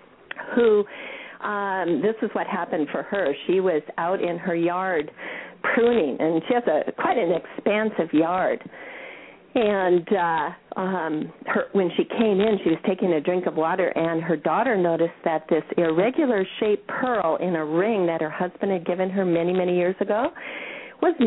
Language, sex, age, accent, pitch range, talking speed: English, female, 50-69, American, 170-240 Hz, 165 wpm